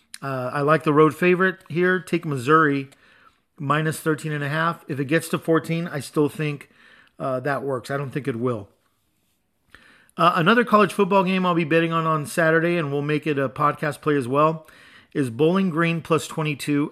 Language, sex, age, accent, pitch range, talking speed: English, male, 40-59, American, 135-160 Hz, 185 wpm